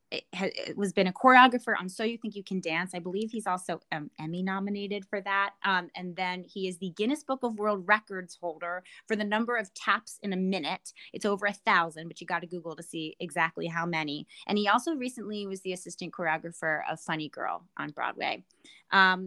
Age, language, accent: 20-39, English, American